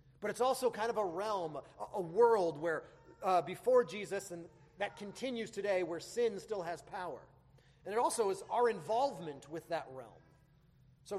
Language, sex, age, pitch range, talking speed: English, male, 30-49, 145-215 Hz, 170 wpm